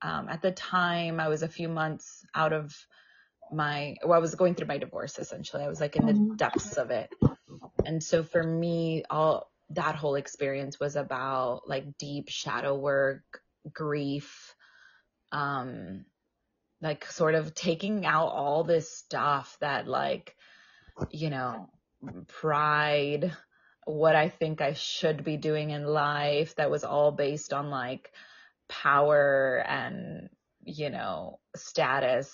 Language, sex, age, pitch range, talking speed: Italian, female, 20-39, 145-170 Hz, 145 wpm